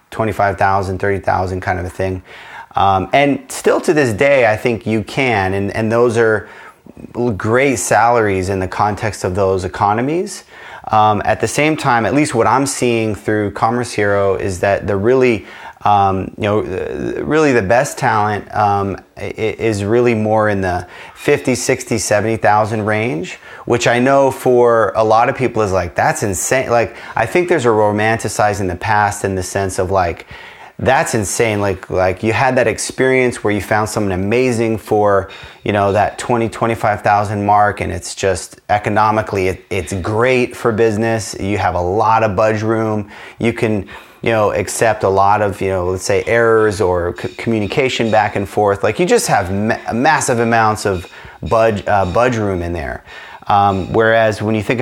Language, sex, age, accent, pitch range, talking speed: English, male, 30-49, American, 100-115 Hz, 180 wpm